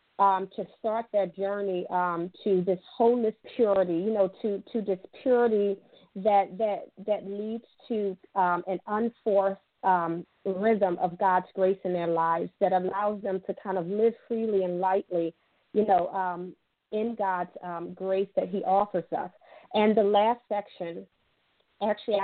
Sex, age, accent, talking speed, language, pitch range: female, 40-59, American, 155 wpm, English, 185-220 Hz